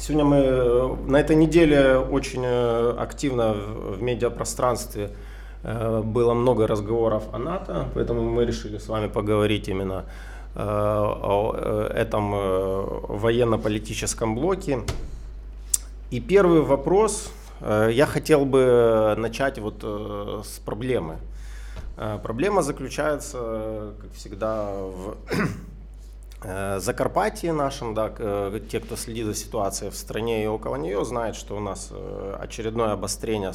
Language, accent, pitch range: Ukrainian, native, 100-130 Hz